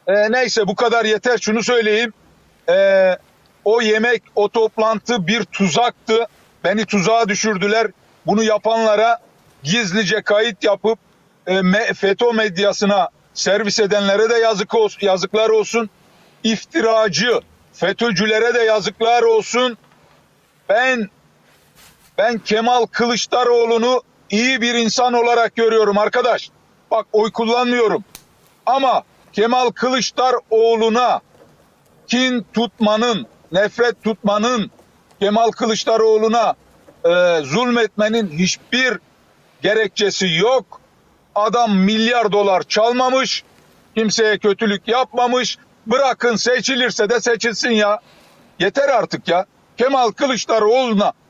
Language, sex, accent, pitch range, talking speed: Turkish, male, native, 210-240 Hz, 95 wpm